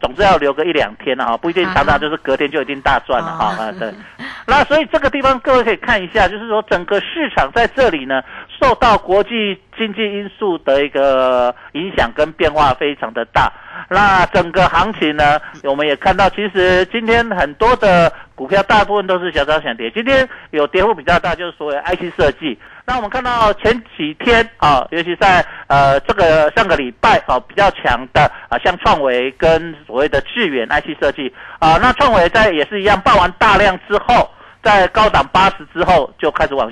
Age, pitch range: 50-69, 140-210 Hz